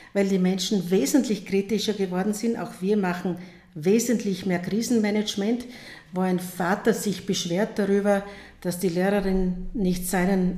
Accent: Austrian